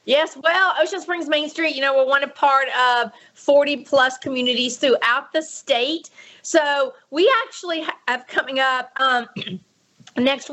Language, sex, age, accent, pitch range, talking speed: English, female, 40-59, American, 230-290 Hz, 150 wpm